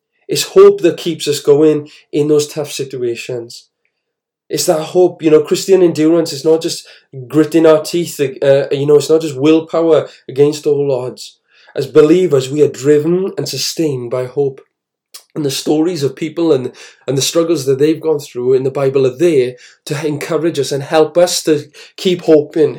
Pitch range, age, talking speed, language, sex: 140-175 Hz, 20-39, 180 wpm, English, male